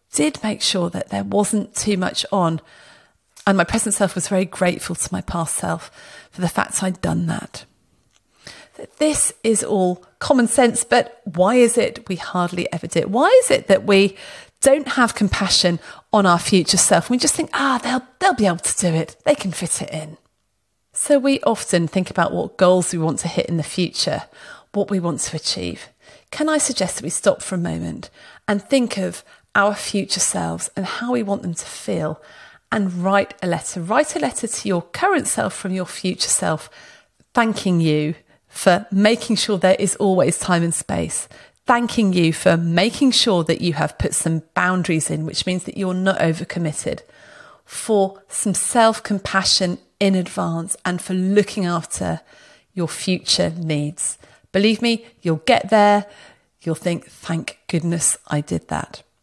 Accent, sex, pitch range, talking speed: British, female, 165-215 Hz, 180 wpm